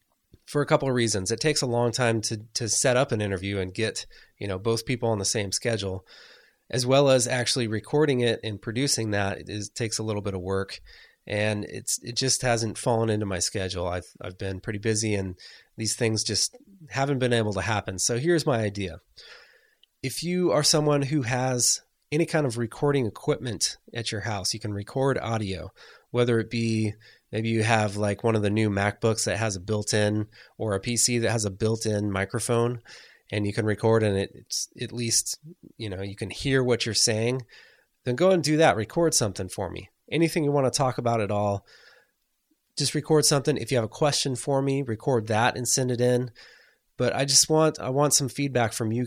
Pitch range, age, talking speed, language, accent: 105-130 Hz, 20-39, 210 wpm, English, American